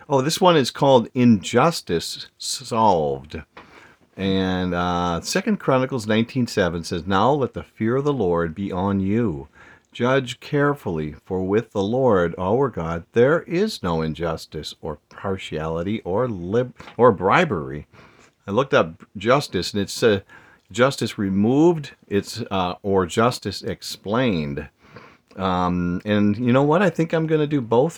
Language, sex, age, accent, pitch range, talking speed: English, male, 50-69, American, 90-125 Hz, 145 wpm